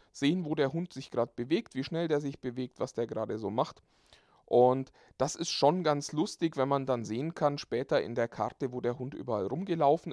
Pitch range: 130-165 Hz